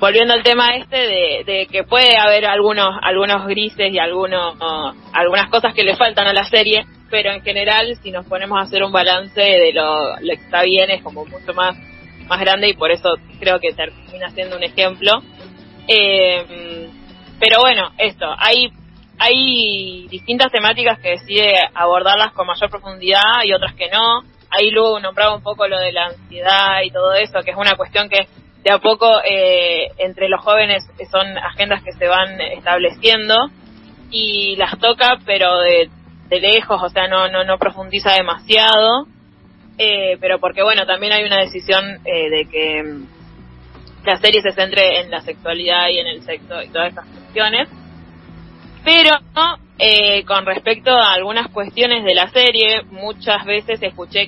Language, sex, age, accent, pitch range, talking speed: Spanish, female, 20-39, Argentinian, 185-220 Hz, 170 wpm